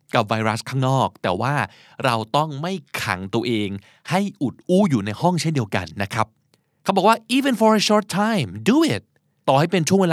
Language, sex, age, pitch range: Thai, male, 20-39, 115-155 Hz